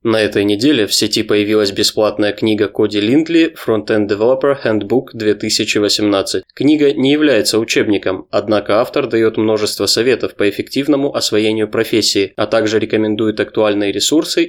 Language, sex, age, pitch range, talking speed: Russian, male, 20-39, 105-115 Hz, 135 wpm